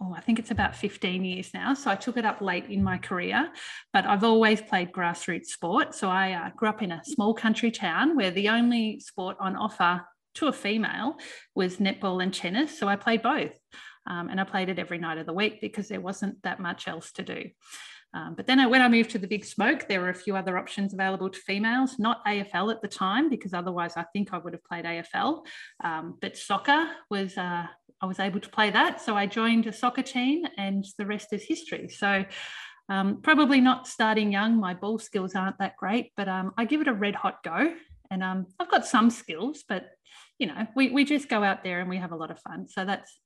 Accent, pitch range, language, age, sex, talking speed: Australian, 190-245 Hz, English, 30-49, female, 235 wpm